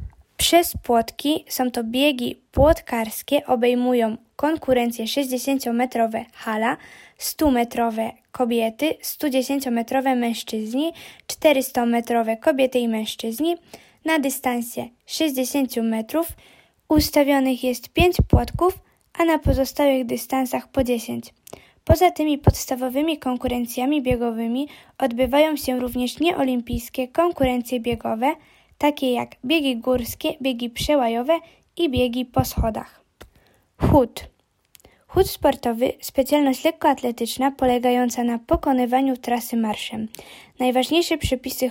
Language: Polish